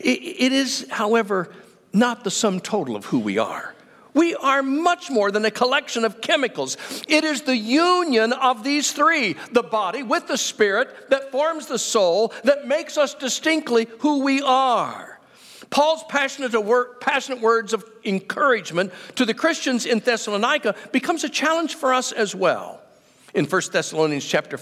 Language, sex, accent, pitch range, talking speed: English, male, American, 215-285 Hz, 160 wpm